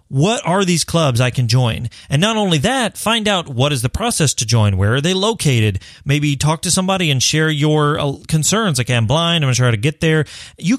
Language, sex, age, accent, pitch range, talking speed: English, male, 30-49, American, 125-170 Hz, 240 wpm